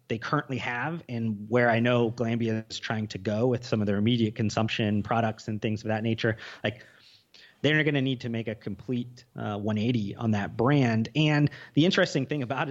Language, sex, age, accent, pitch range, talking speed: English, male, 30-49, American, 110-130 Hz, 210 wpm